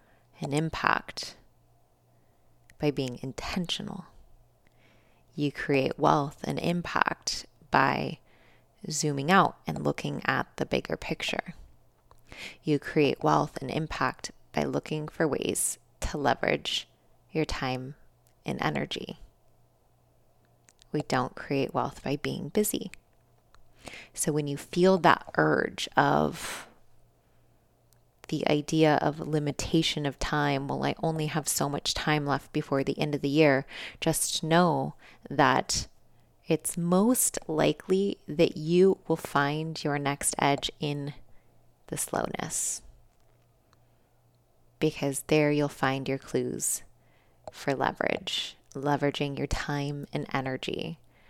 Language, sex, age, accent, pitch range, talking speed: English, female, 20-39, American, 135-155 Hz, 115 wpm